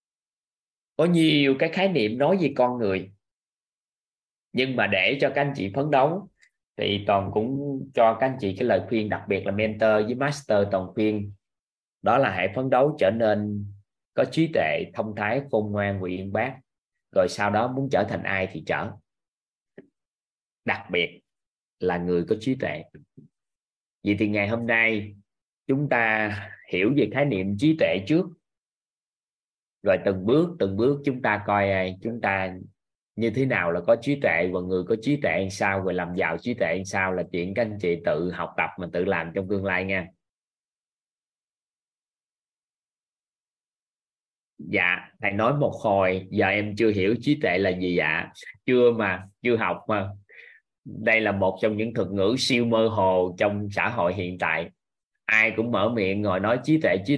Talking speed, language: 180 wpm, Vietnamese